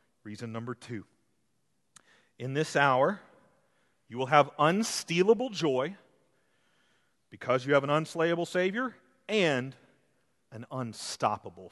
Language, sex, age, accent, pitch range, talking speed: English, male, 40-59, American, 125-170 Hz, 100 wpm